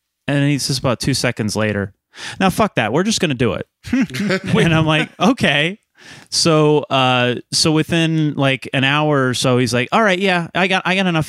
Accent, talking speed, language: American, 200 wpm, English